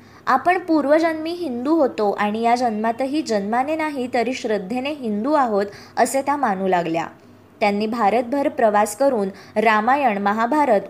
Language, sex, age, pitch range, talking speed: Marathi, male, 20-39, 210-285 Hz, 125 wpm